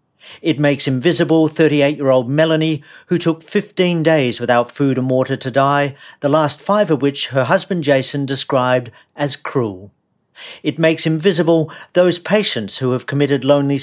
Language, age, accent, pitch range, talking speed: English, 50-69, British, 125-165 Hz, 150 wpm